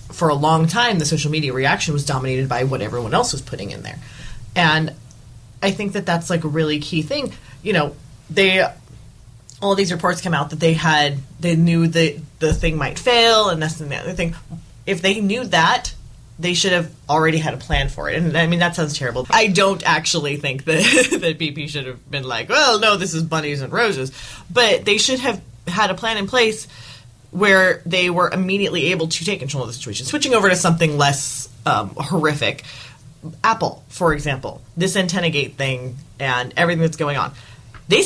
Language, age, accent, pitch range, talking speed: English, 30-49, American, 130-180 Hz, 205 wpm